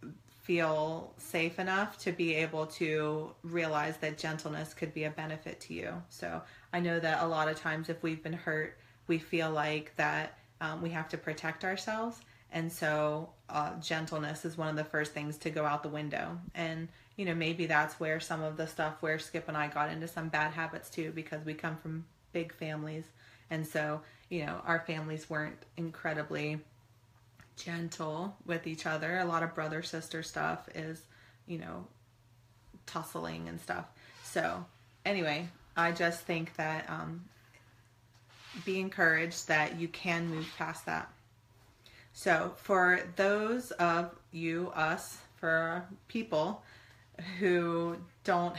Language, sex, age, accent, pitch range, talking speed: English, female, 30-49, American, 150-170 Hz, 155 wpm